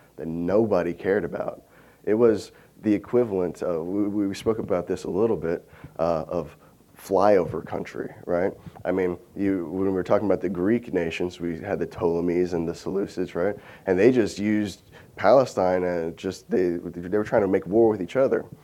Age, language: 20-39, English